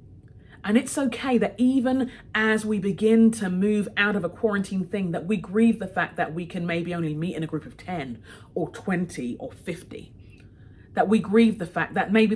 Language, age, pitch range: English, 30-49, 125-205 Hz